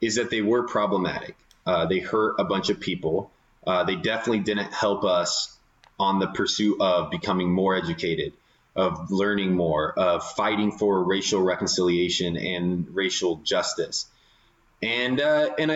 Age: 20-39